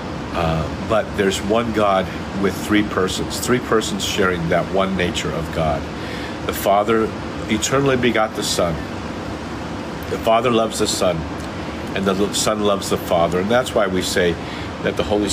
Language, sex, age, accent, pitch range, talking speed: English, male, 50-69, American, 85-110 Hz, 160 wpm